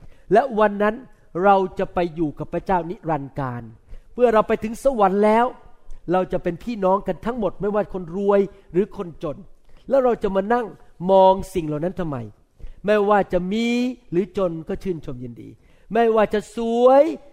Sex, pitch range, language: male, 185-275 Hz, Thai